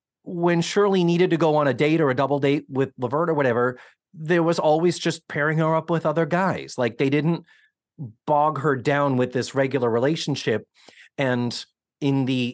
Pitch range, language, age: 115-160 Hz, English, 40-59